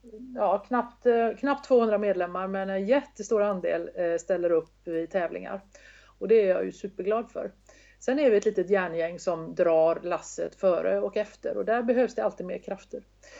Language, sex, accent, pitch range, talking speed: Swedish, female, native, 185-235 Hz, 175 wpm